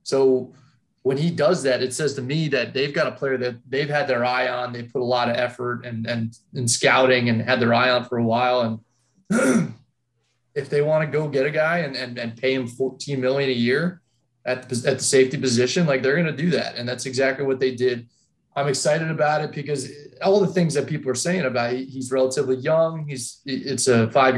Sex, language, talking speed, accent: male, English, 235 wpm, American